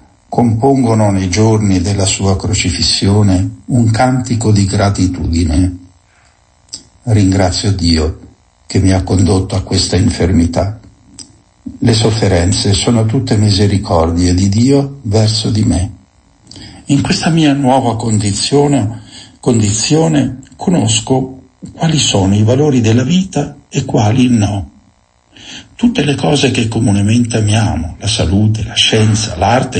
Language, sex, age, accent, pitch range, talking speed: Italian, male, 60-79, native, 95-125 Hz, 115 wpm